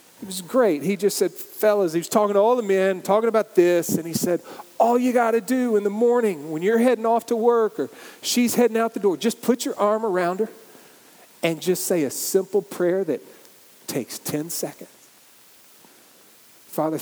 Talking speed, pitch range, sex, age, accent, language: 200 wpm, 150-195 Hz, male, 40-59, American, English